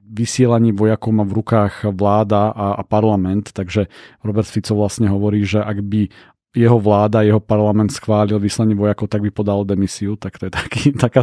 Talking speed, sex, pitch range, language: 175 wpm, male, 105-120 Hz, Slovak